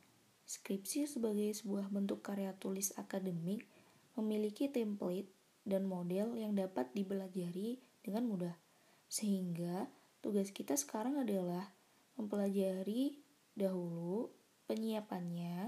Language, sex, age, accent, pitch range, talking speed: Indonesian, female, 20-39, native, 185-220 Hz, 90 wpm